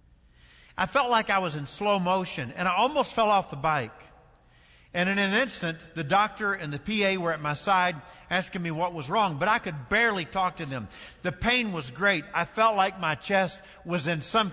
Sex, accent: male, American